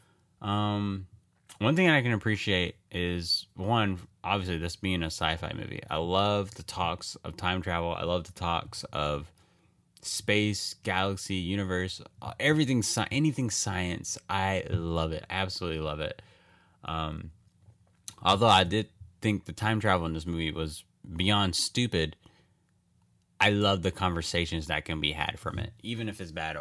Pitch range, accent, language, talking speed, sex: 85-105 Hz, American, English, 150 wpm, male